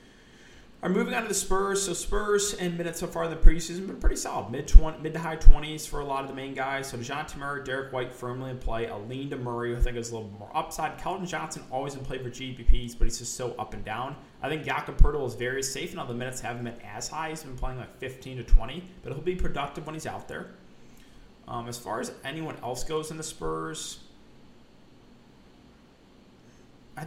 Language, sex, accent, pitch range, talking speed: English, male, American, 120-160 Hz, 235 wpm